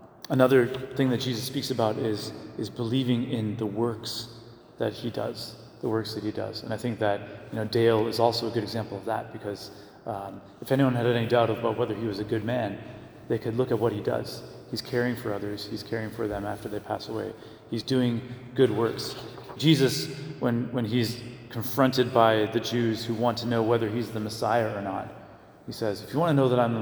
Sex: male